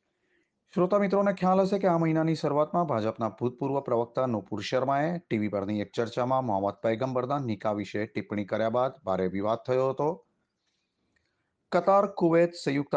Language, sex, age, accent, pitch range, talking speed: Gujarati, male, 30-49, native, 105-150 Hz, 55 wpm